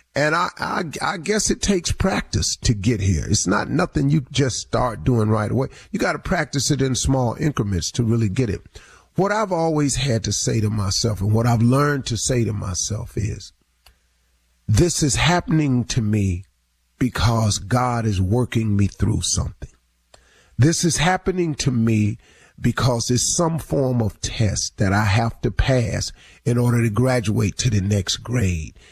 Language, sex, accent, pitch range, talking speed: English, male, American, 105-140 Hz, 175 wpm